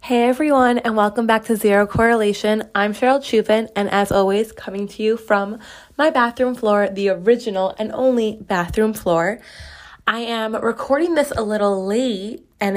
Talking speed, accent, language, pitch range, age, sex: 165 wpm, American, English, 195-230 Hz, 20-39, female